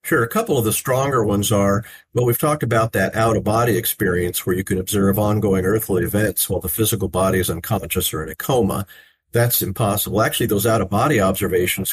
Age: 50-69